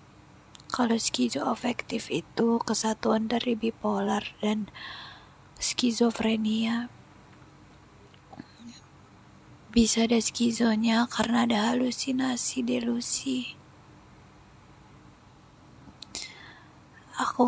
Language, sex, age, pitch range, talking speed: Indonesian, female, 20-39, 230-255 Hz, 55 wpm